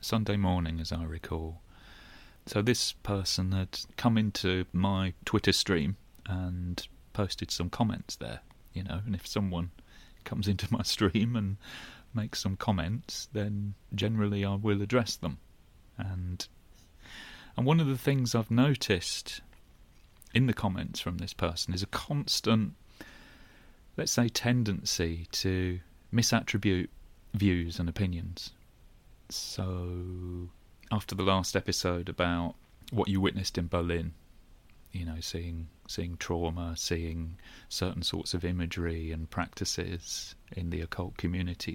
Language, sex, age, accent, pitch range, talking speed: English, male, 30-49, British, 85-105 Hz, 130 wpm